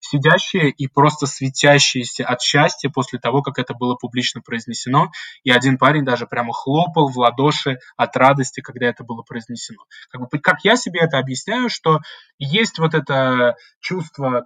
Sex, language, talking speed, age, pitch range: male, Russian, 160 wpm, 20-39, 125-155 Hz